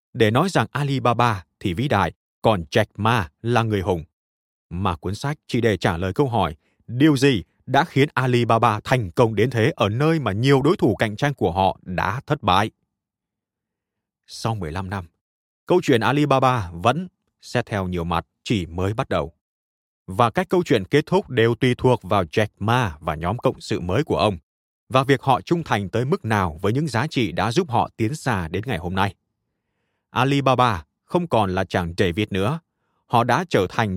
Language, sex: Vietnamese, male